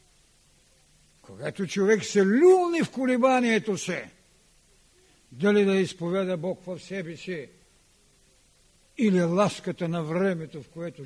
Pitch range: 150-205 Hz